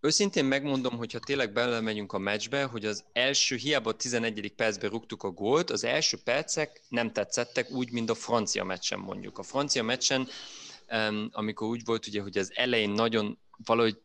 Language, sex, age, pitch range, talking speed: Hungarian, male, 20-39, 105-125 Hz, 180 wpm